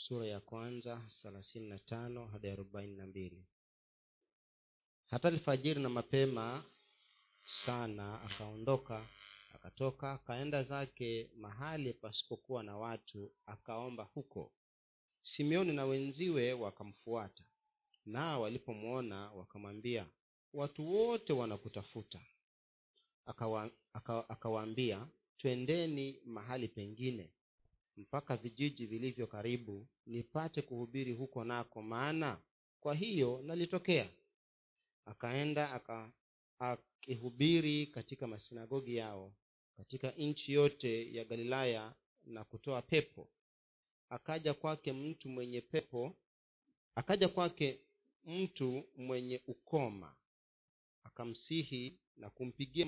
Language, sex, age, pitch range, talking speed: Swahili, male, 40-59, 110-140 Hz, 85 wpm